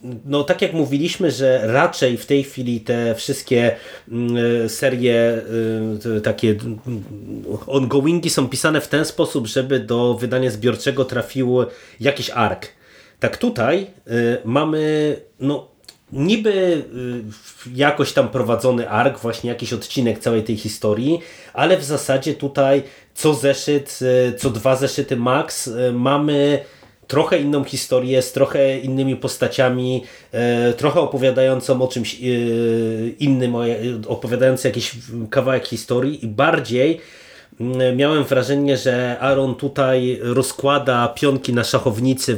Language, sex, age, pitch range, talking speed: Polish, male, 30-49, 120-140 Hz, 110 wpm